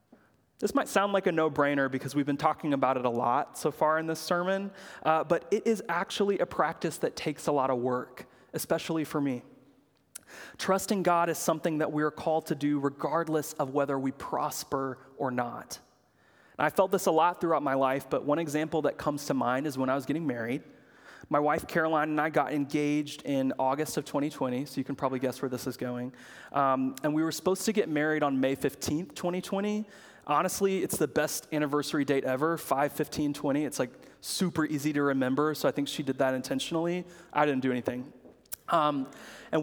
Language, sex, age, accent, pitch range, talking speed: English, male, 30-49, American, 140-165 Hz, 205 wpm